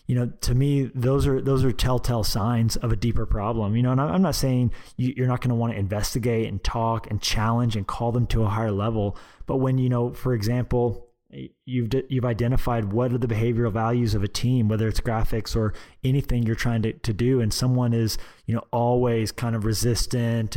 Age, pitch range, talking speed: 20-39, 110-125 Hz, 215 wpm